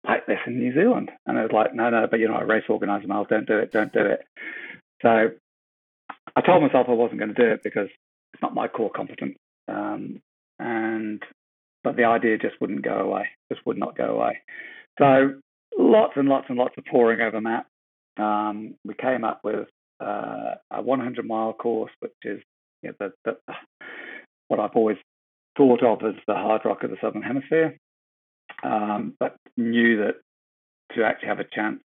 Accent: British